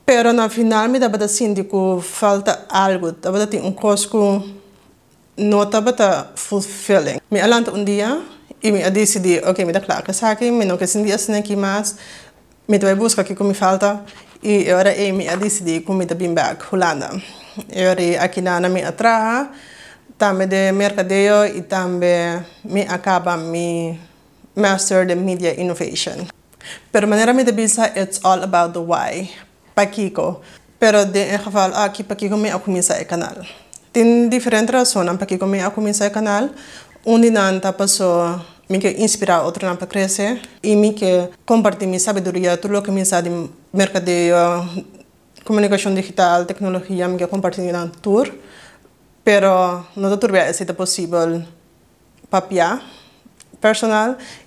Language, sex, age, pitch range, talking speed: English, female, 20-39, 180-210 Hz, 100 wpm